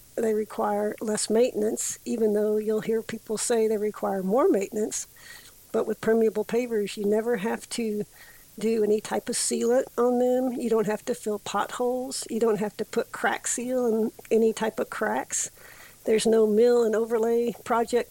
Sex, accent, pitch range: female, American, 215-240 Hz